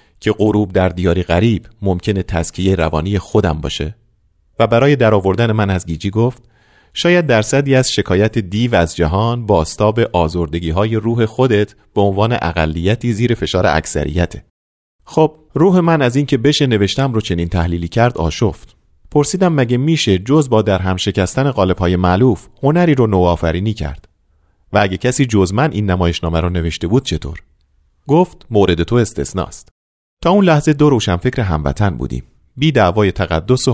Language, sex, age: Persian, male, 40-59